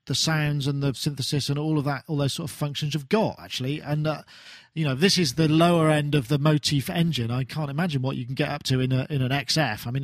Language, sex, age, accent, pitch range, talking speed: English, male, 40-59, British, 135-155 Hz, 275 wpm